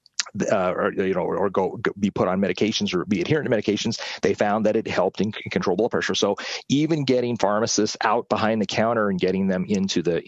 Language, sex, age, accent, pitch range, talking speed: English, male, 30-49, American, 95-110 Hz, 220 wpm